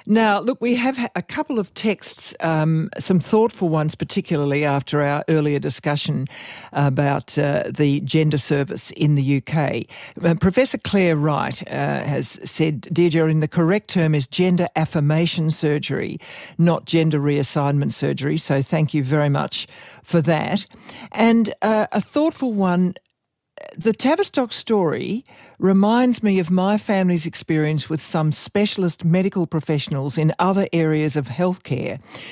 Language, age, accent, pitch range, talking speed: English, 60-79, Australian, 155-195 Hz, 140 wpm